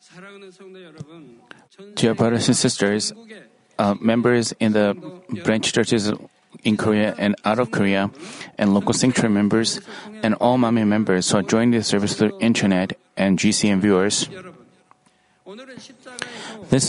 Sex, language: male, Korean